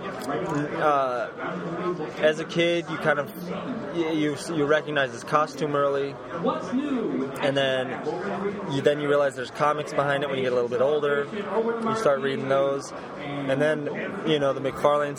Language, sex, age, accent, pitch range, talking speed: English, male, 20-39, American, 130-150 Hz, 160 wpm